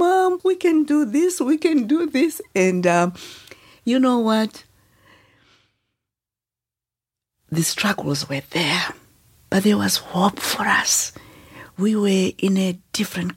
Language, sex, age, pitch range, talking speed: English, female, 60-79, 140-180 Hz, 130 wpm